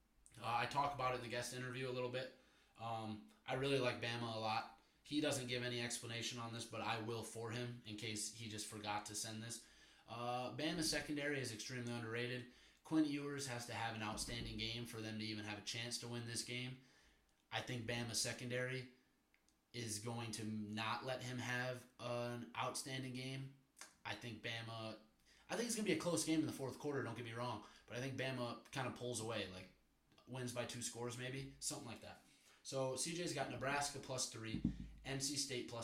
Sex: male